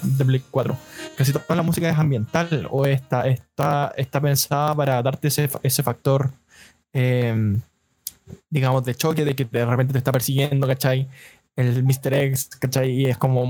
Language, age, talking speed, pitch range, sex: Spanish, 20-39, 160 wpm, 130-155 Hz, male